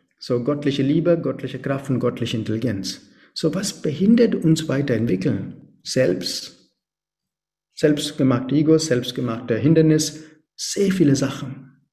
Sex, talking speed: male, 105 wpm